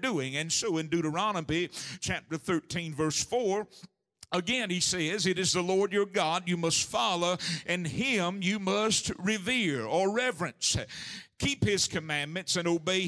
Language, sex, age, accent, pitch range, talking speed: English, male, 50-69, American, 170-200 Hz, 150 wpm